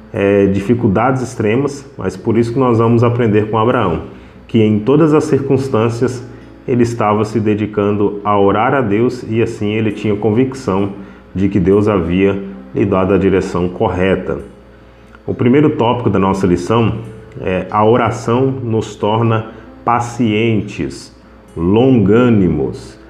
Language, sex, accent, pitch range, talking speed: Portuguese, male, Brazilian, 100-115 Hz, 130 wpm